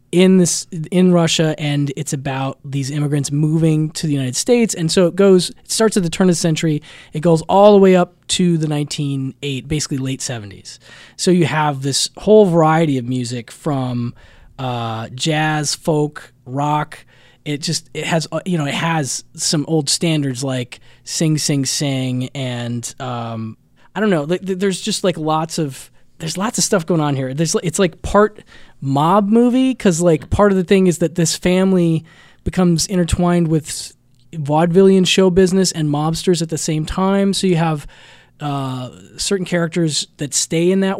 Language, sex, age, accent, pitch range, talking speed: English, male, 20-39, American, 135-180 Hz, 180 wpm